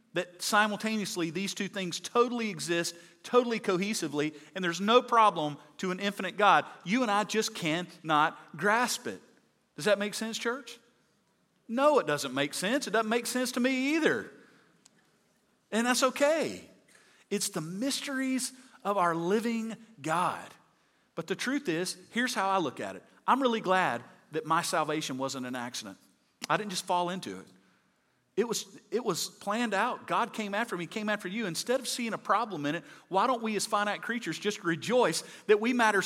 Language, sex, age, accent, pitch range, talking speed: English, male, 40-59, American, 185-245 Hz, 180 wpm